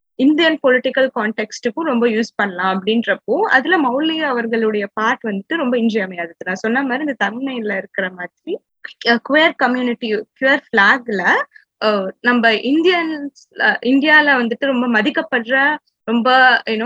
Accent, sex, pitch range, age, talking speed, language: native, female, 210-265 Hz, 20-39, 120 wpm, Tamil